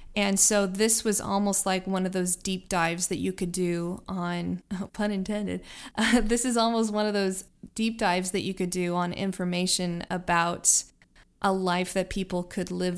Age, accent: 20-39, American